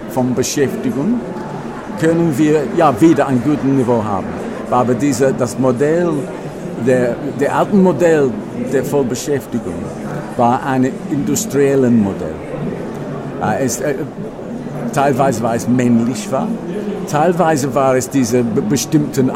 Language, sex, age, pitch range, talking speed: German, male, 60-79, 120-155 Hz, 110 wpm